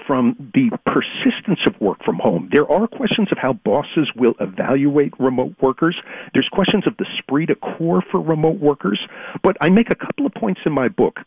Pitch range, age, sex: 140-220 Hz, 50-69, male